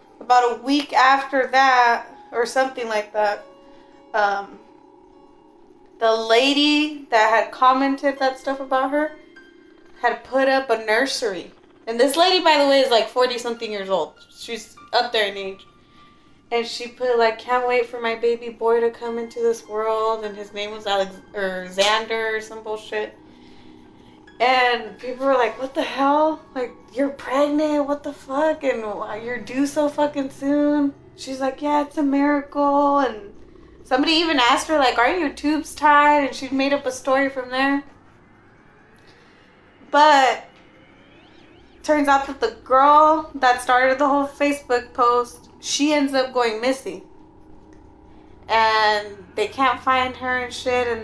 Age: 20-39